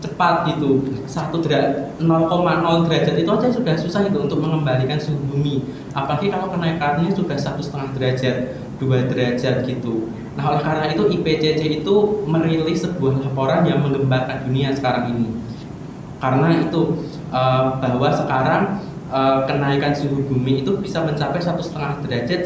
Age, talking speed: 20-39, 140 wpm